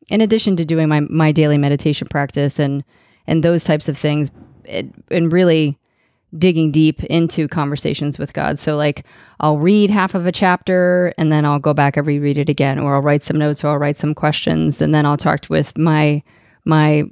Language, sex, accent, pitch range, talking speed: English, female, American, 150-170 Hz, 205 wpm